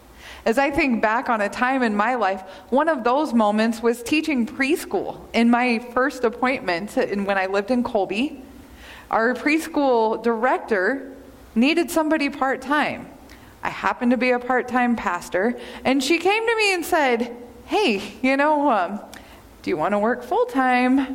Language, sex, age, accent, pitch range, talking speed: English, female, 20-39, American, 225-285 Hz, 160 wpm